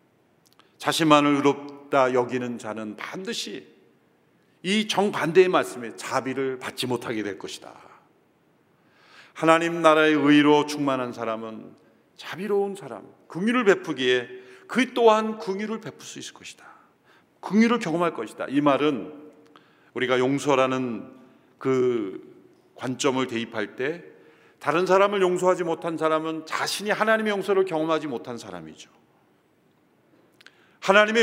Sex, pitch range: male, 125-195 Hz